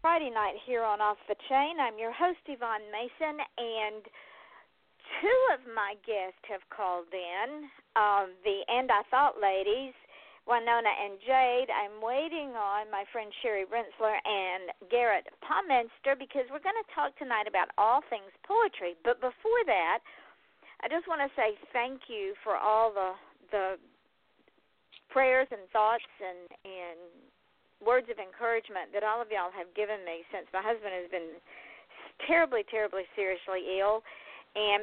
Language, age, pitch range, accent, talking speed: English, 50-69, 195-255 Hz, American, 150 wpm